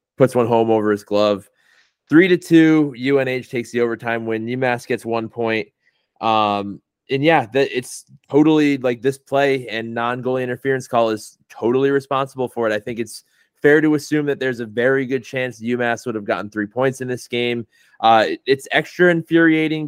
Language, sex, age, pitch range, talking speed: English, male, 20-39, 110-135 Hz, 185 wpm